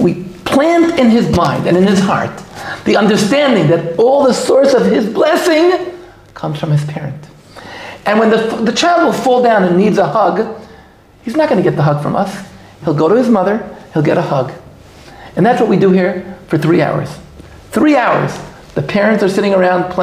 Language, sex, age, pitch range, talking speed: English, male, 50-69, 165-225 Hz, 200 wpm